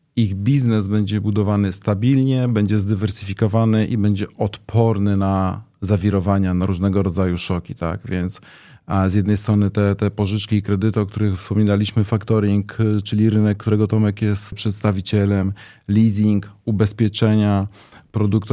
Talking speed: 130 wpm